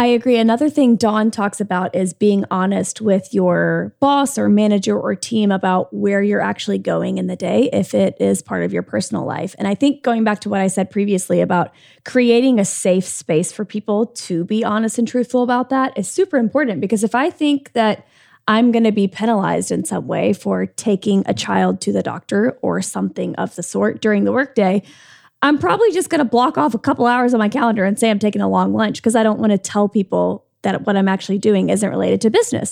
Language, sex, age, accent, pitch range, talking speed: English, female, 20-39, American, 190-235 Hz, 225 wpm